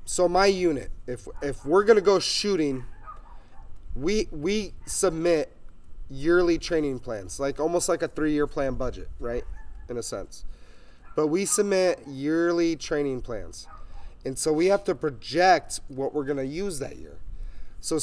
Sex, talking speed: male, 150 wpm